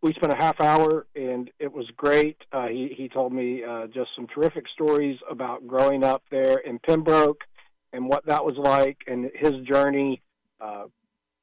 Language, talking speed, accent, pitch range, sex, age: English, 180 wpm, American, 130-155 Hz, male, 50-69